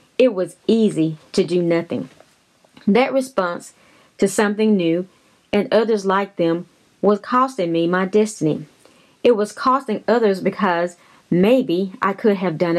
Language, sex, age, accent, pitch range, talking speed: English, female, 30-49, American, 170-215 Hz, 140 wpm